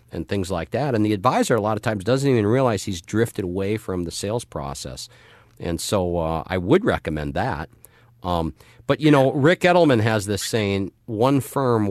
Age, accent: 50-69, American